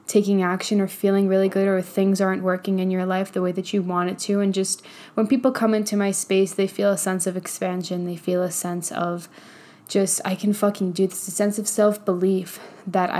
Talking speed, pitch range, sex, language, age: 225 wpm, 185-205 Hz, female, English, 10-29